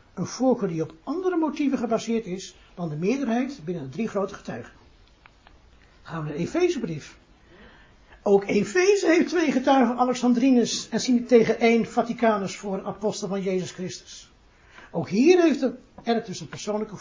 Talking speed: 160 wpm